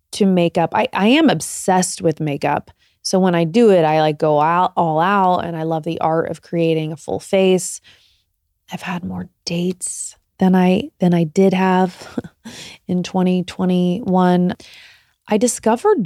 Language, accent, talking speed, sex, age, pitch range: English, American, 160 wpm, female, 20-39, 165-205 Hz